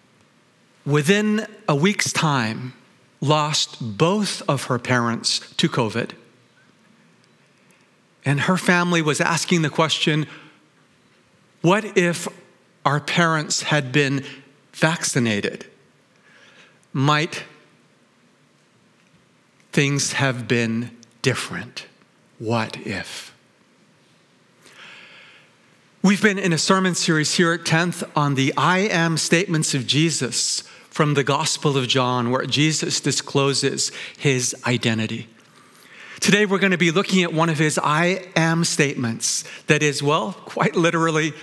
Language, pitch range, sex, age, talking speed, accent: English, 135-175 Hz, male, 50-69, 110 wpm, American